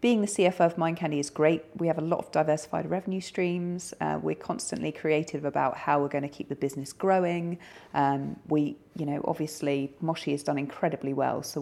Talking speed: 205 wpm